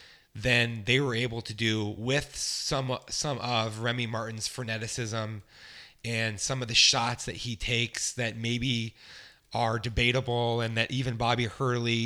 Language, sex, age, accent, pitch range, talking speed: English, male, 30-49, American, 115-130 Hz, 150 wpm